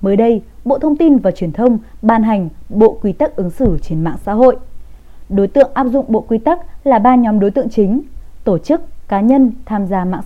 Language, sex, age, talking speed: Vietnamese, female, 20-39, 230 wpm